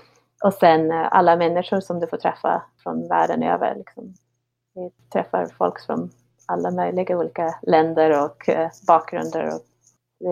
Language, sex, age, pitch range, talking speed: English, female, 30-49, 150-185 Hz, 140 wpm